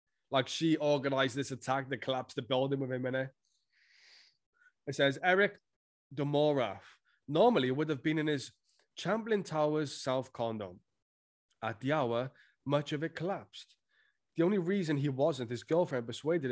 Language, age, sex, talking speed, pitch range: English, 20-39, male, 155 wpm, 120-175 Hz